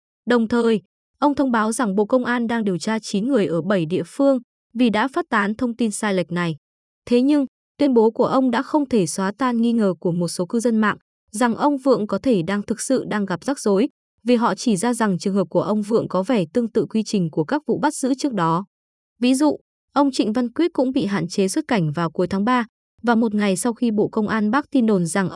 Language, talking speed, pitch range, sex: Vietnamese, 260 wpm, 190-250 Hz, female